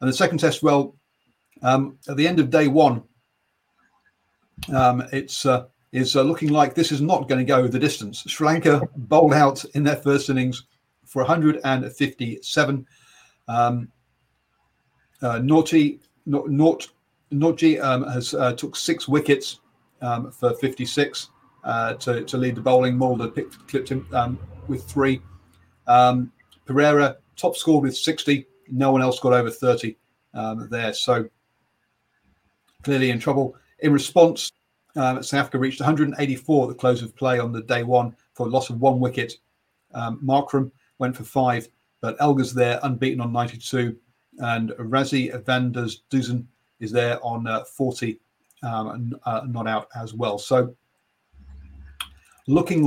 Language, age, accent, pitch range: English, 40-59, British, 120-140 Hz